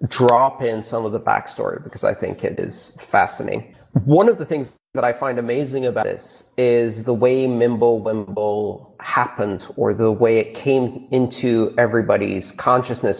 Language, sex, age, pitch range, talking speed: English, male, 30-49, 120-155 Hz, 160 wpm